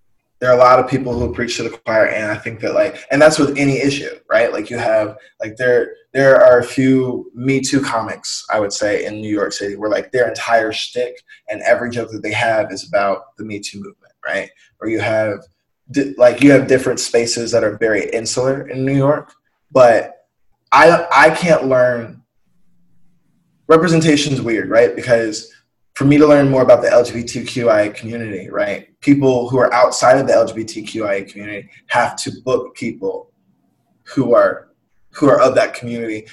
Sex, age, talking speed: male, 20-39, 185 wpm